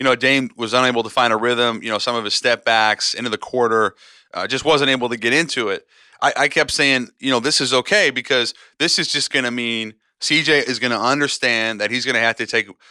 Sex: male